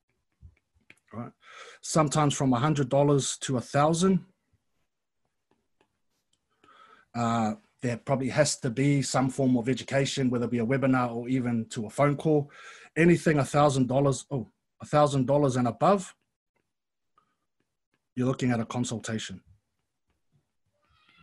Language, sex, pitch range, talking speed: English, male, 120-145 Hz, 105 wpm